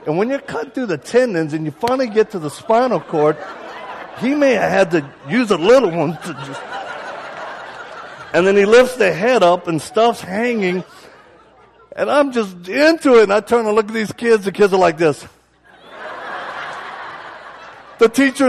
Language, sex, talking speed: English, male, 180 wpm